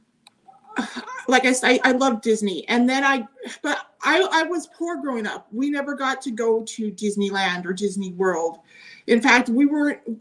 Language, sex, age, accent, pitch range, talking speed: English, female, 30-49, American, 215-270 Hz, 175 wpm